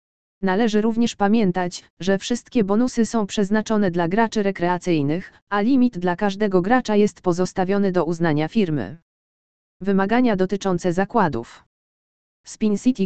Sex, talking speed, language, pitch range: female, 120 wpm, Polish, 185-220 Hz